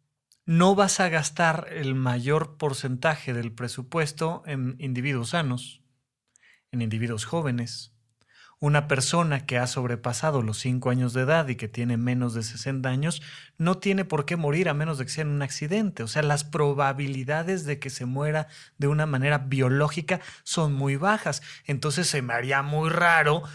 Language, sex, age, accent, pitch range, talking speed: Spanish, male, 30-49, Mexican, 130-170 Hz, 170 wpm